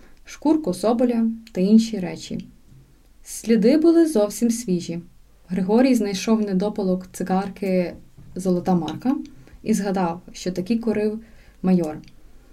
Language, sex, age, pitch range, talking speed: Ukrainian, female, 20-39, 185-245 Hz, 100 wpm